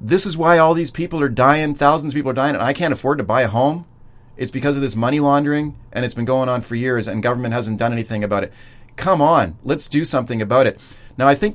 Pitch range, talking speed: 115-145 Hz, 265 wpm